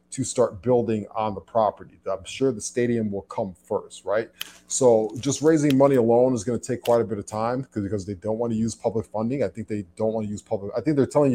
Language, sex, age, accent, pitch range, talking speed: English, male, 20-39, American, 105-125 Hz, 255 wpm